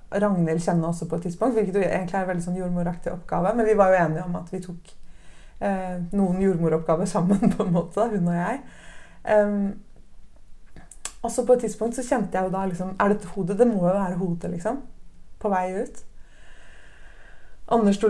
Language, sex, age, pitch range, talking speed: Danish, female, 30-49, 175-225 Hz, 180 wpm